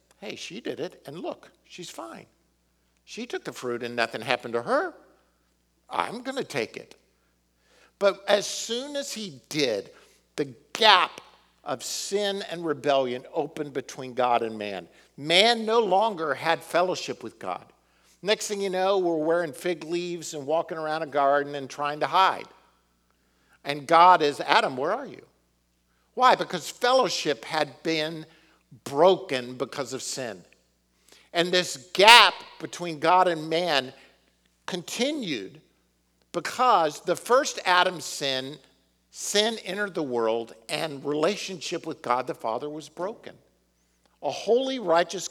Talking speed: 140 wpm